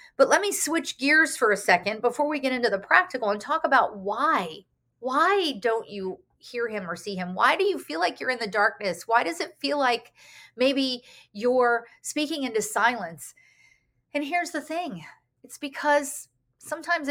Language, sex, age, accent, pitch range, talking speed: English, female, 40-59, American, 220-295 Hz, 180 wpm